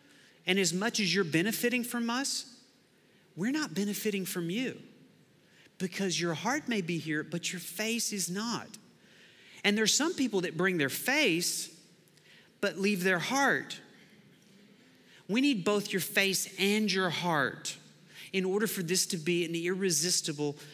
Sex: male